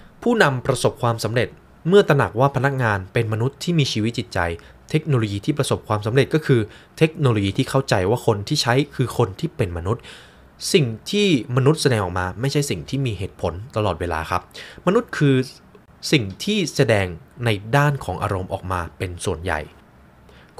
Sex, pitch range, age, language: male, 95-140 Hz, 20-39, Thai